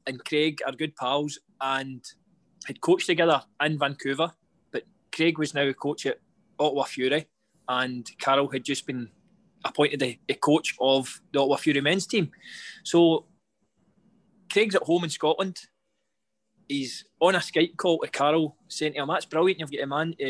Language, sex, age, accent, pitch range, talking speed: English, male, 20-39, British, 140-175 Hz, 170 wpm